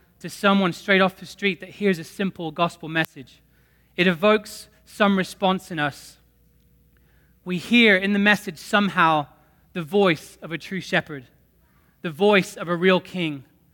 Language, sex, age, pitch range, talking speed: English, male, 20-39, 170-200 Hz, 155 wpm